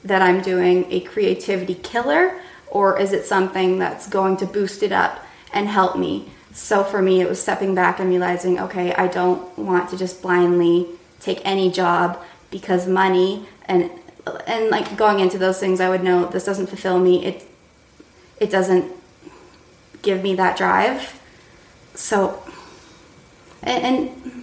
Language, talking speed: English, 155 wpm